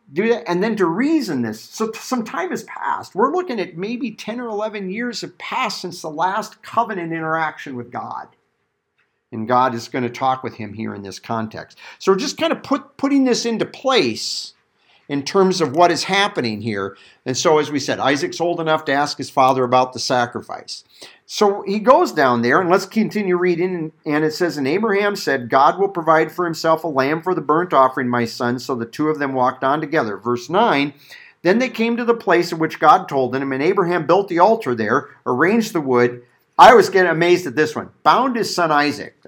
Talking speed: 215 wpm